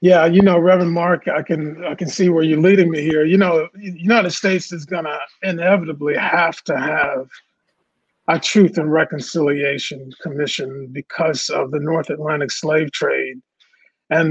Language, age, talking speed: English, 40-59, 165 wpm